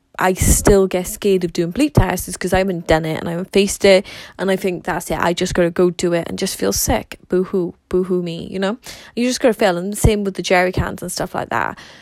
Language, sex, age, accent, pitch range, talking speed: English, female, 20-39, British, 180-205 Hz, 285 wpm